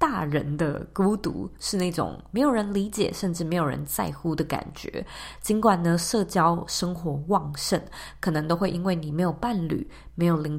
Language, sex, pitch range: Chinese, female, 160-200 Hz